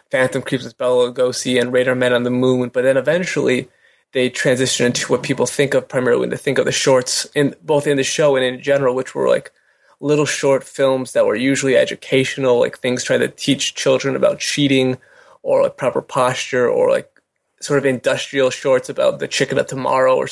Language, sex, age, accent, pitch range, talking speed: English, male, 20-39, American, 130-145 Hz, 205 wpm